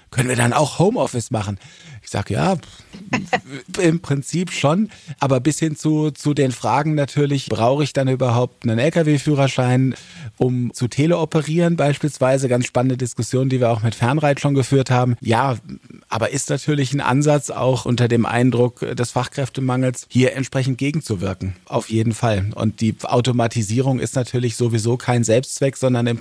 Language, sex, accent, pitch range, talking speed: German, male, German, 115-135 Hz, 160 wpm